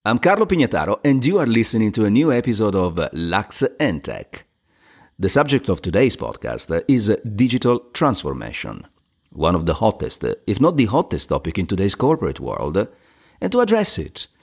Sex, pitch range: male, 90-140 Hz